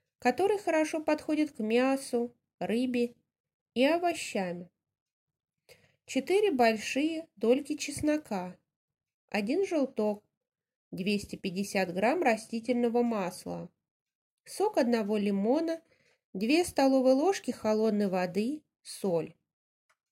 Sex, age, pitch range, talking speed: female, 20-39, 195-275 Hz, 80 wpm